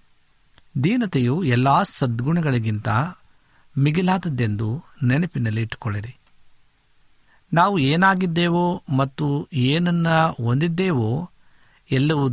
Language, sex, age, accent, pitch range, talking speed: Kannada, male, 50-69, native, 115-150 Hz, 60 wpm